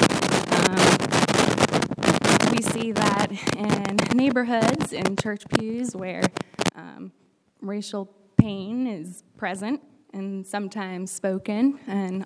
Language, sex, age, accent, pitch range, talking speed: English, female, 10-29, American, 200-225 Hz, 95 wpm